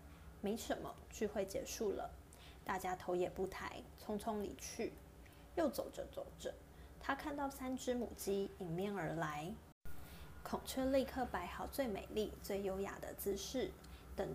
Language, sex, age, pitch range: Chinese, female, 20-39, 185-240 Hz